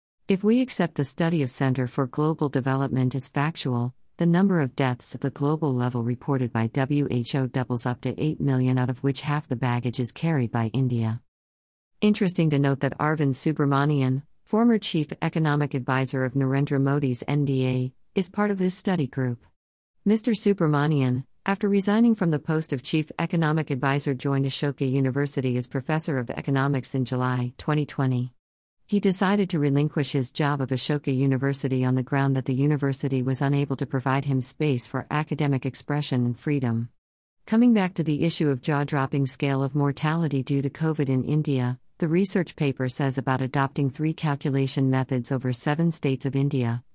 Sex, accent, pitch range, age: female, American, 130-150 Hz, 50-69